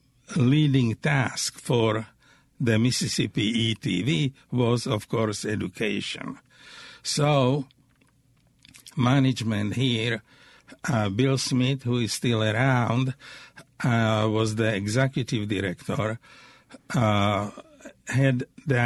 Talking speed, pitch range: 90 wpm, 115-135 Hz